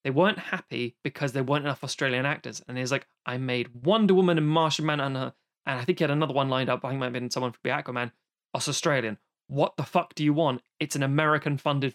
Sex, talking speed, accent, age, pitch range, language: male, 260 wpm, British, 20-39, 135-160 Hz, English